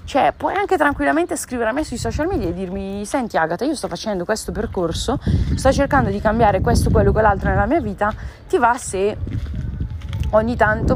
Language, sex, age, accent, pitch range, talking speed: Italian, female, 20-39, native, 170-220 Hz, 185 wpm